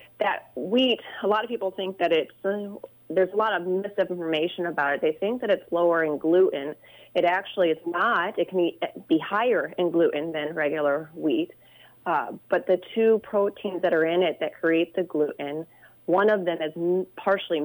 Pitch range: 165-190 Hz